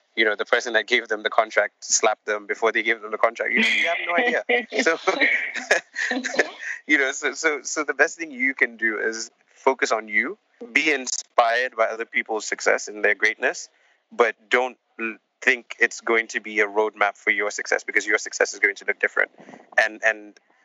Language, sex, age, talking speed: English, male, 20-39, 200 wpm